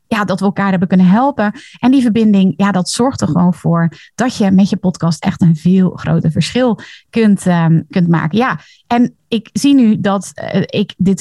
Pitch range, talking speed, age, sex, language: 175-230 Hz, 210 wpm, 30-49, female, Dutch